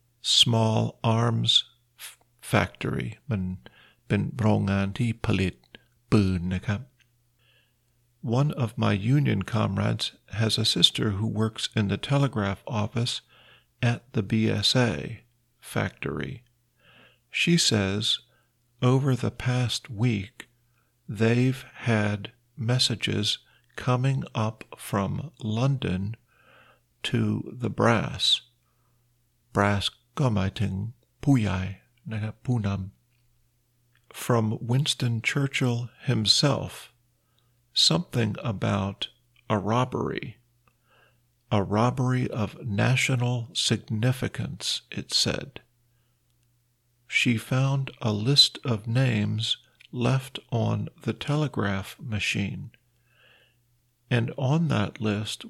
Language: Thai